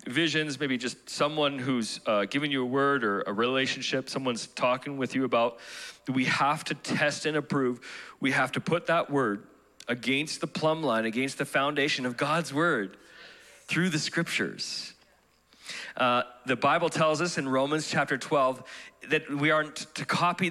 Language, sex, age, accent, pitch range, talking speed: English, male, 40-59, American, 135-165 Hz, 165 wpm